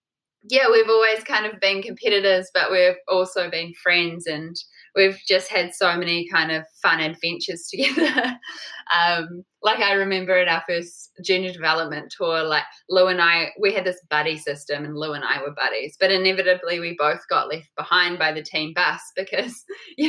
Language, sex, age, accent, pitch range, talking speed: English, female, 10-29, Australian, 165-195 Hz, 180 wpm